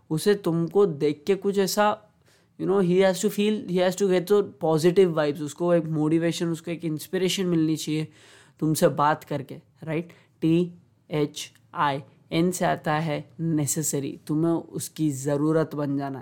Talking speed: 165 wpm